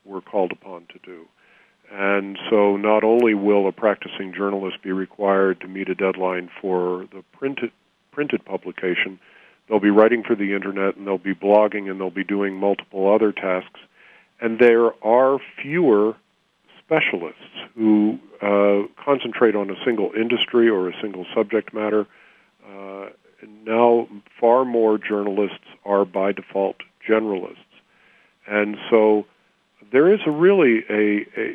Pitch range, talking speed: 100-115 Hz, 145 wpm